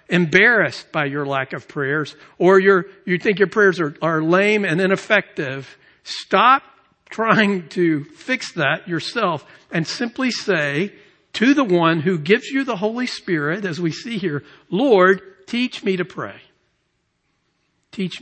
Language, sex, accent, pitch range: English, male, American, 155-210 Hz